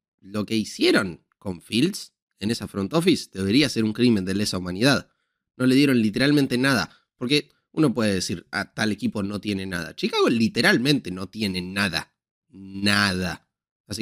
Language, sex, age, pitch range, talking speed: Spanish, male, 20-39, 90-110 Hz, 165 wpm